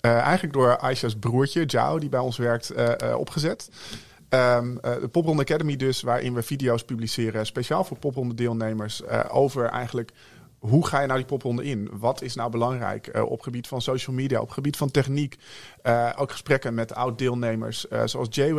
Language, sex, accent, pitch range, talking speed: English, male, Dutch, 115-140 Hz, 185 wpm